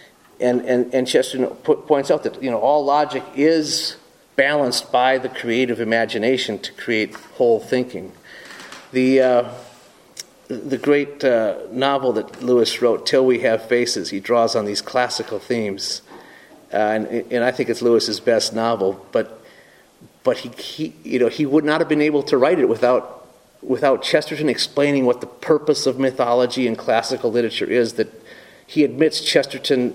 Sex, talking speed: male, 150 wpm